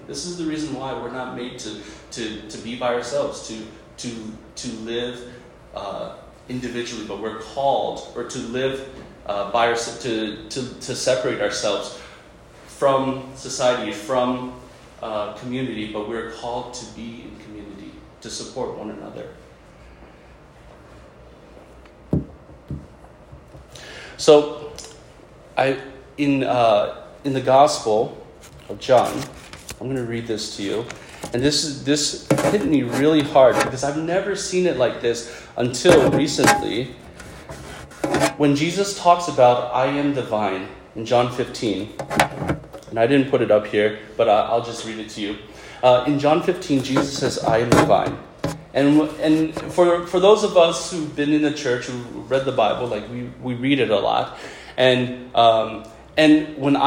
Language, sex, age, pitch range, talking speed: English, male, 30-49, 110-145 Hz, 150 wpm